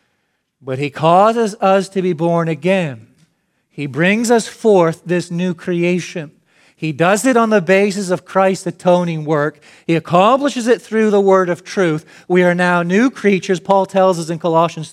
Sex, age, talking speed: male, 40-59, 175 wpm